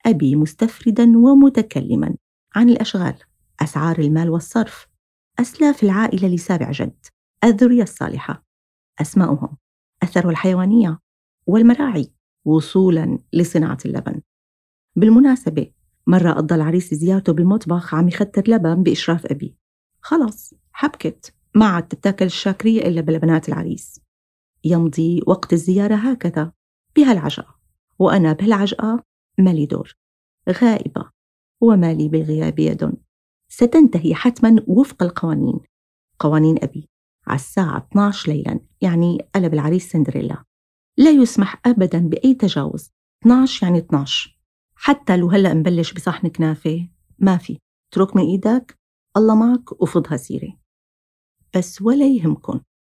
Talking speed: 105 wpm